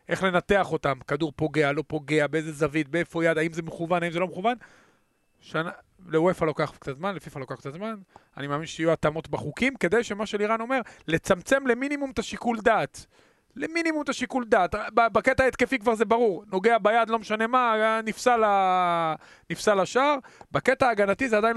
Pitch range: 165-225 Hz